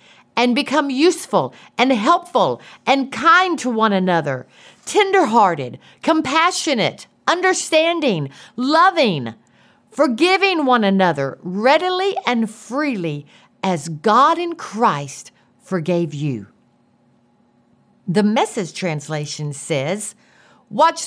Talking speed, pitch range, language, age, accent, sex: 90 wpm, 180-290 Hz, English, 50-69, American, female